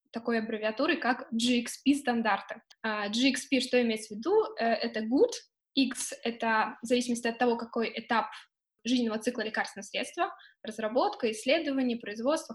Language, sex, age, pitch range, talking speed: Russian, female, 10-29, 220-270 Hz, 140 wpm